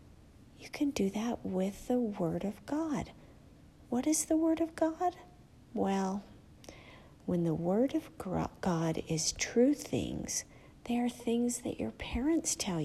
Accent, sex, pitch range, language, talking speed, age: American, female, 175-275 Hz, English, 145 wpm, 50-69